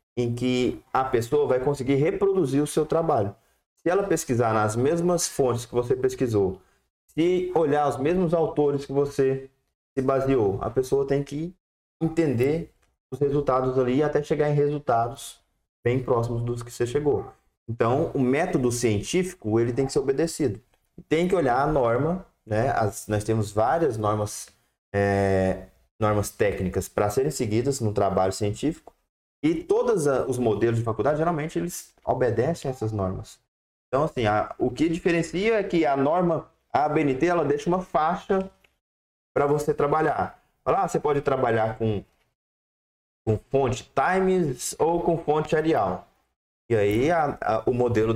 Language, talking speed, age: Portuguese, 155 wpm, 20-39